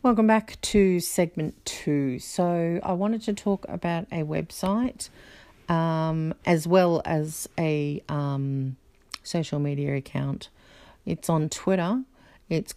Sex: female